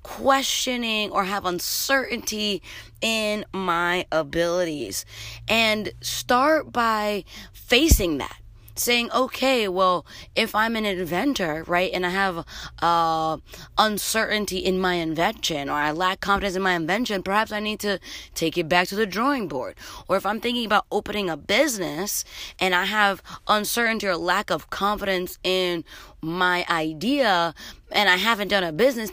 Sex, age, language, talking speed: female, 20-39, English, 145 wpm